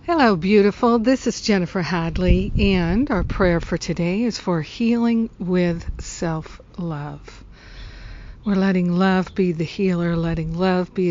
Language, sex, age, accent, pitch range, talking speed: English, female, 60-79, American, 170-200 Hz, 135 wpm